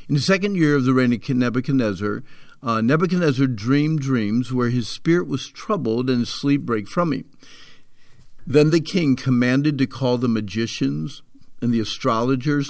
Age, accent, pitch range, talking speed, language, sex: 50-69, American, 125-155 Hz, 165 wpm, English, male